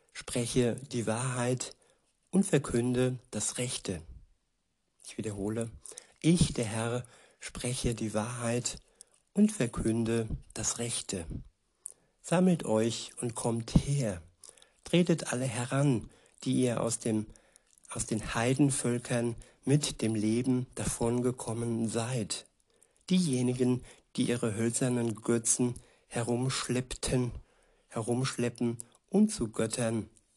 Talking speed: 95 wpm